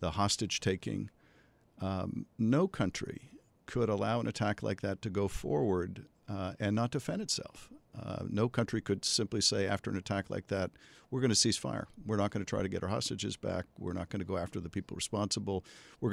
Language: English